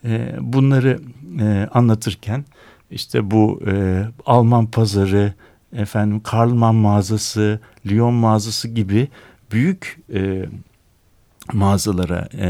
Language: Turkish